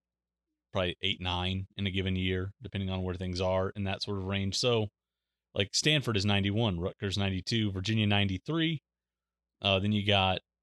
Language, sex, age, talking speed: English, male, 30-49, 170 wpm